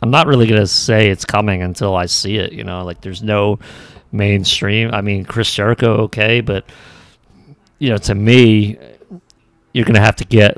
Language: English